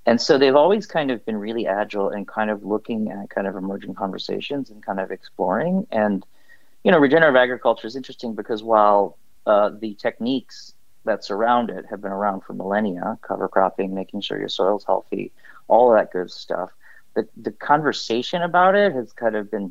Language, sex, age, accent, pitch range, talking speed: English, male, 40-59, American, 100-120 Hz, 190 wpm